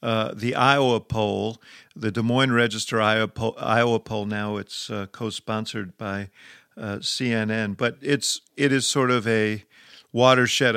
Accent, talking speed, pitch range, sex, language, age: American, 155 wpm, 105-125 Hz, male, English, 50-69